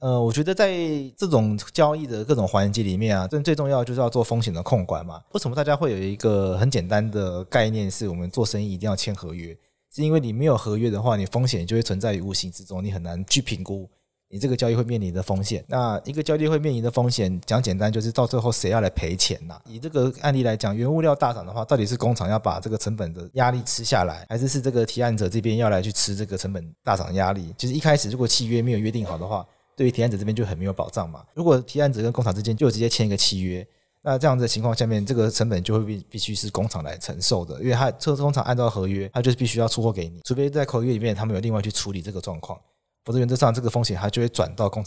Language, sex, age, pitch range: Chinese, male, 30-49, 100-125 Hz